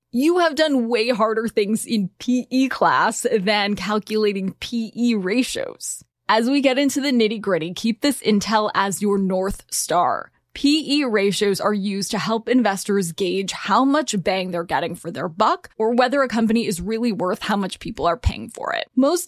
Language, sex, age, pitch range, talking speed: English, female, 10-29, 195-250 Hz, 180 wpm